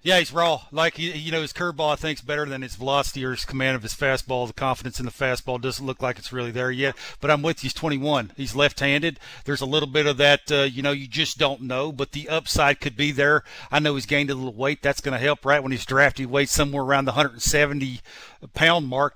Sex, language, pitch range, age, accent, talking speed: male, English, 140-170 Hz, 50-69, American, 265 wpm